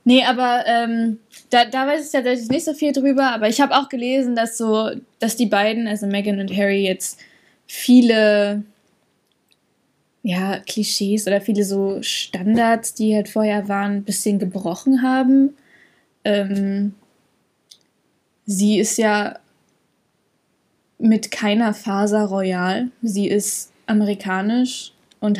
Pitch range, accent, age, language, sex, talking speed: 205-255 Hz, German, 10-29, German, female, 130 wpm